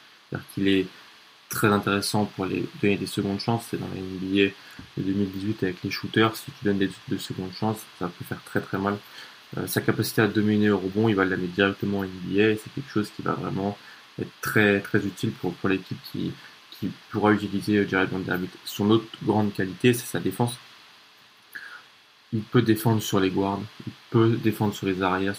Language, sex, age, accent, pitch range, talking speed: French, male, 20-39, French, 95-110 Hz, 200 wpm